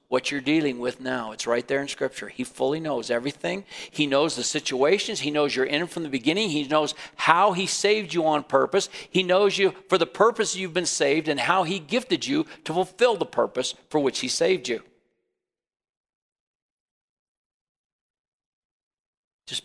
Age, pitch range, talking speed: 50-69, 125-175 Hz, 175 wpm